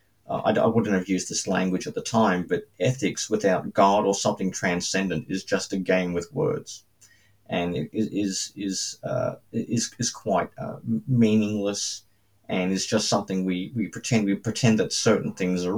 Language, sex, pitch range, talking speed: English, male, 95-115 Hz, 170 wpm